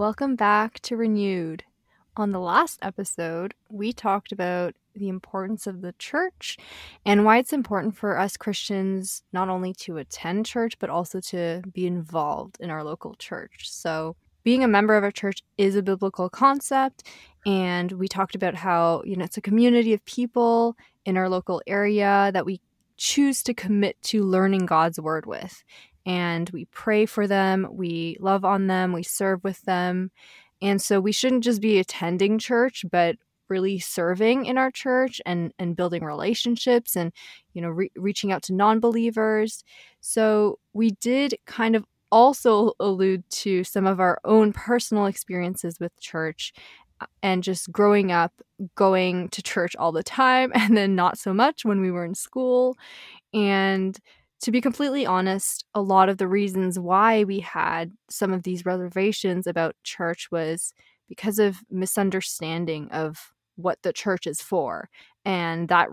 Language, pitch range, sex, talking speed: English, 180-220 Hz, female, 165 wpm